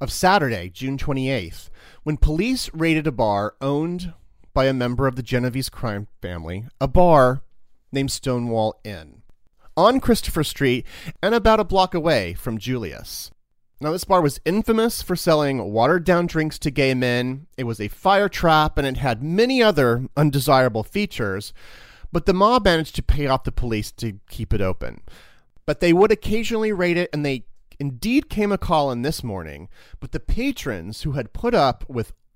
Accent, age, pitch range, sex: American, 40-59, 115-175 Hz, male